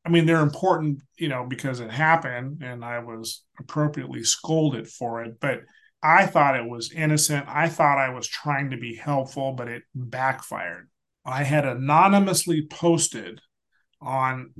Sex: male